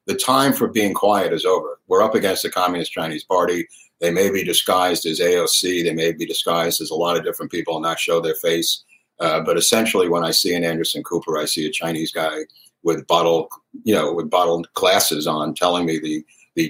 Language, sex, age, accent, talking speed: English, male, 50-69, American, 220 wpm